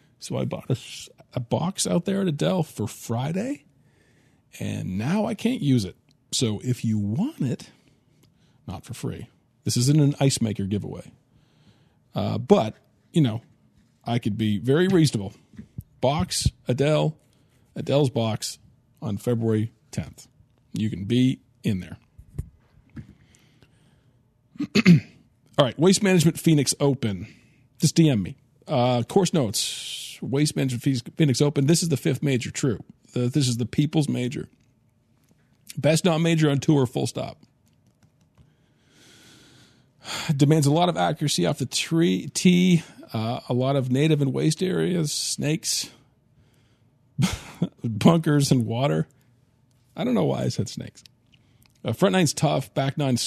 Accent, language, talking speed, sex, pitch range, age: American, English, 135 wpm, male, 120-155 Hz, 40-59